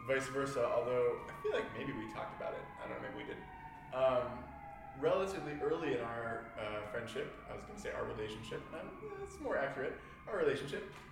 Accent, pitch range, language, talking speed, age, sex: American, 110-150 Hz, English, 200 wpm, 20-39, male